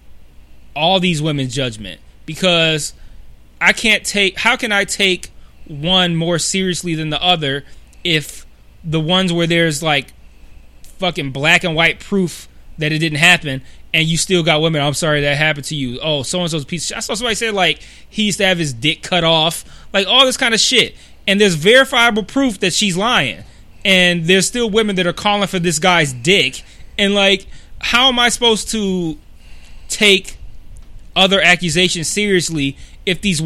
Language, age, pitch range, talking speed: English, 20-39, 150-195 Hz, 180 wpm